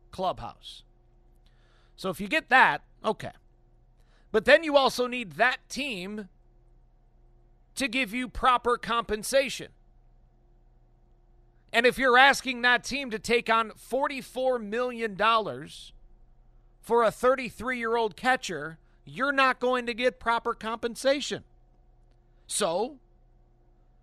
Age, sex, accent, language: 50-69, male, American, English